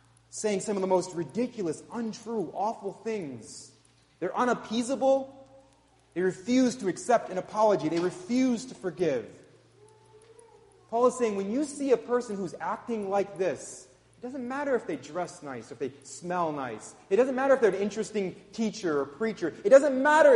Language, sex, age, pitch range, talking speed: English, male, 30-49, 150-220 Hz, 170 wpm